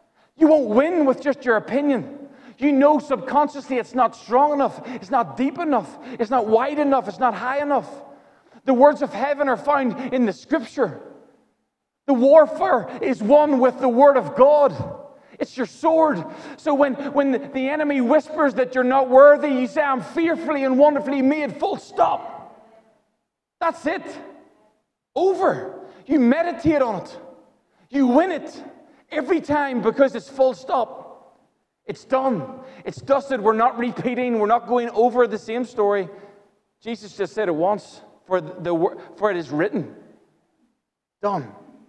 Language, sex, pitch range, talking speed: English, male, 205-285 Hz, 155 wpm